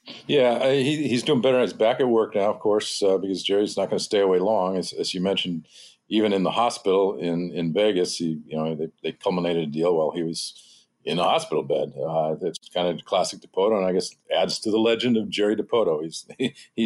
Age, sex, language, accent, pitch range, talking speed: 50-69, male, English, American, 85-105 Hz, 230 wpm